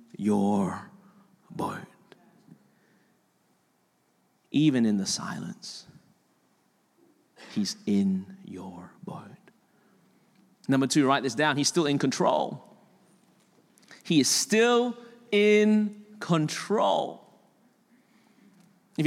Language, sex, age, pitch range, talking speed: English, male, 30-49, 185-235 Hz, 80 wpm